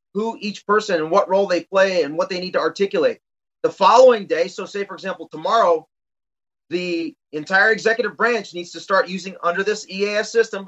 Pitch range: 180-220 Hz